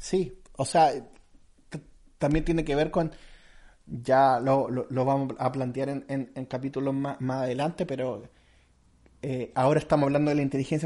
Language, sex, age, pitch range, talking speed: Spanish, male, 30-49, 135-170 Hz, 135 wpm